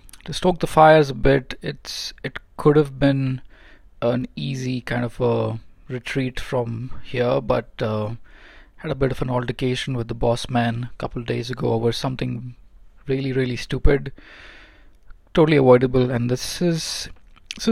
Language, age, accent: English, 20-39, Indian